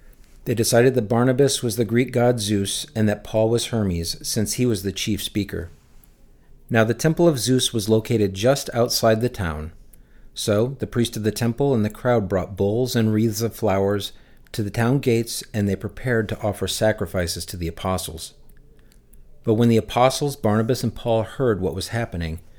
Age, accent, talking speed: 50-69, American, 185 wpm